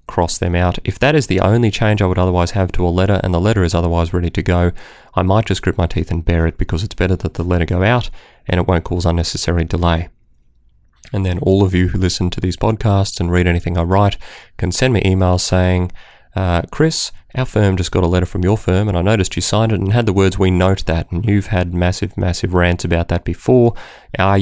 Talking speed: 250 wpm